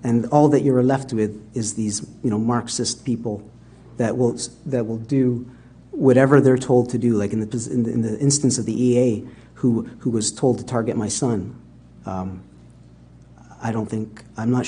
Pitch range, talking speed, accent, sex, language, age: 110-145 Hz, 185 wpm, American, male, English, 40-59